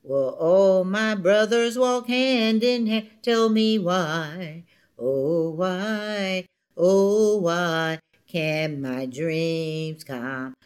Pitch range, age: 140-220 Hz, 60-79